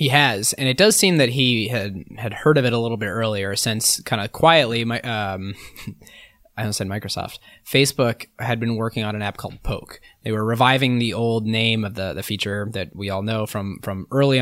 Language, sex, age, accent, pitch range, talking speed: English, male, 20-39, American, 100-120 Hz, 220 wpm